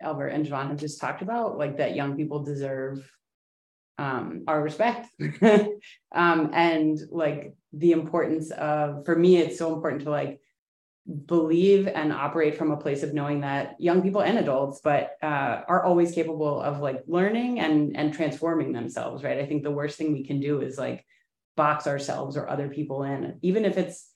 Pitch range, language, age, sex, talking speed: 140-165 Hz, English, 30-49, female, 180 wpm